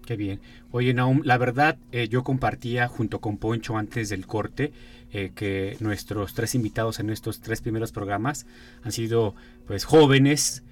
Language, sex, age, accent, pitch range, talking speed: Spanish, male, 30-49, Mexican, 100-120 Hz, 160 wpm